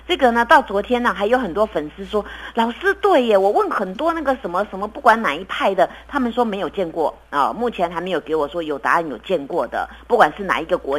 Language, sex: Chinese, female